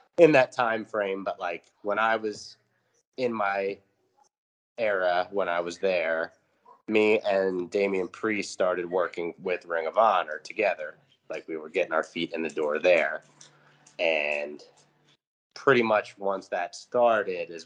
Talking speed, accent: 150 wpm, American